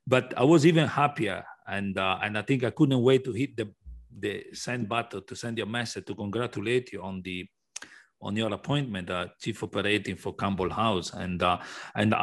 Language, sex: English, male